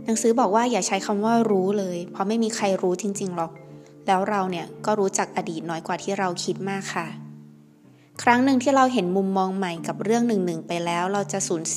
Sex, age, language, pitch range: female, 20-39, Thai, 175-215 Hz